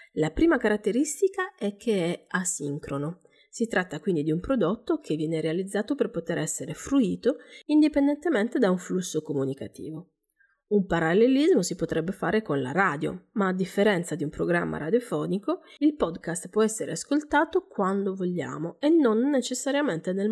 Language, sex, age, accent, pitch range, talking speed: Italian, female, 30-49, native, 160-260 Hz, 150 wpm